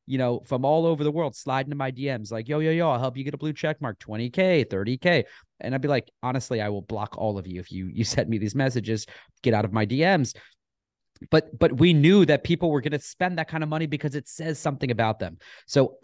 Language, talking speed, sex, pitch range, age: English, 260 wpm, male, 115-145 Hz, 30-49